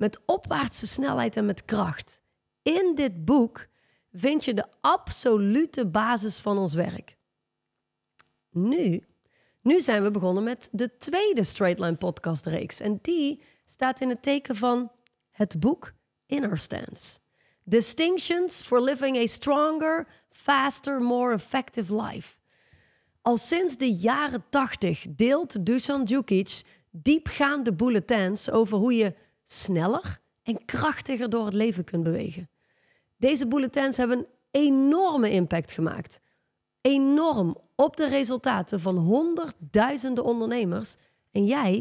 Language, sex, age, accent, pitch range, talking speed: Dutch, female, 30-49, Dutch, 200-275 Hz, 125 wpm